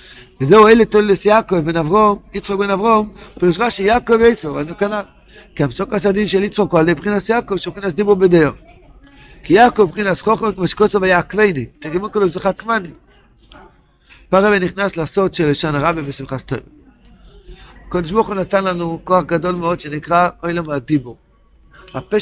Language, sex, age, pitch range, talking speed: Hebrew, male, 60-79, 155-205 Hz, 160 wpm